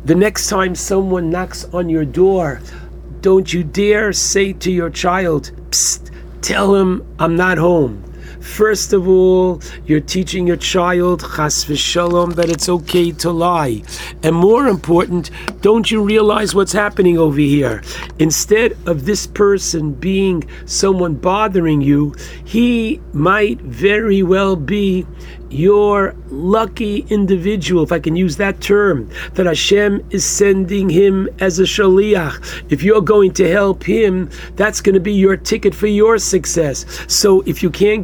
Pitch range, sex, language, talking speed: 160-200 Hz, male, English, 150 wpm